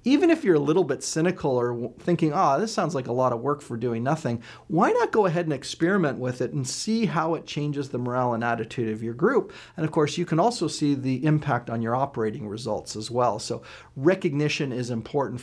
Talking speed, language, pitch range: 230 wpm, English, 125-170 Hz